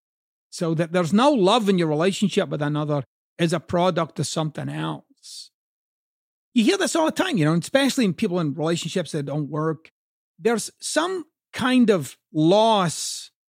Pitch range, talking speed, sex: 165-215 Hz, 165 wpm, male